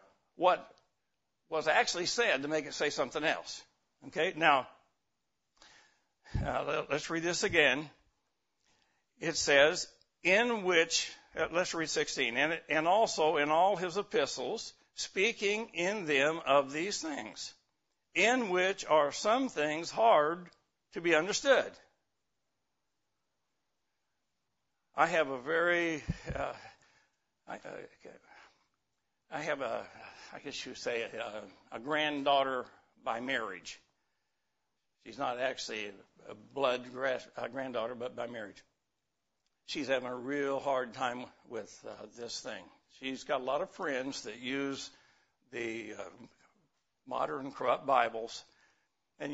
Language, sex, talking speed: English, male, 125 wpm